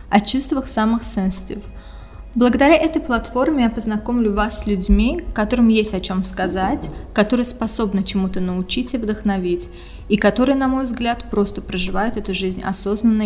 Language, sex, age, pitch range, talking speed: Russian, female, 20-39, 195-230 Hz, 150 wpm